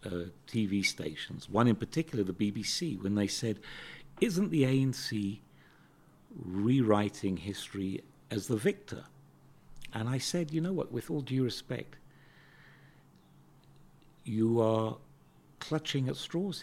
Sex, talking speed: male, 125 wpm